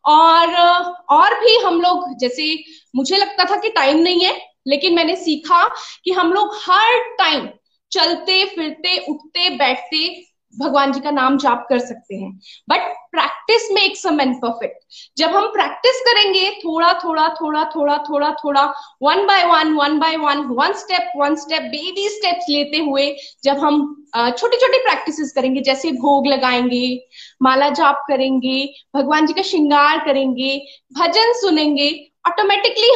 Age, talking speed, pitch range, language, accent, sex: 20-39, 125 wpm, 280-390 Hz, Hindi, native, female